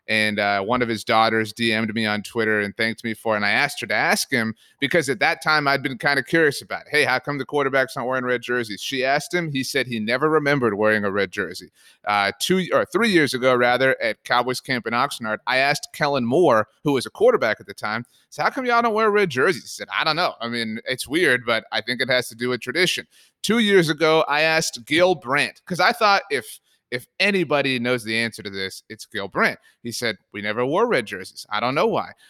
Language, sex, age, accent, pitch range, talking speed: English, male, 30-49, American, 115-160 Hz, 255 wpm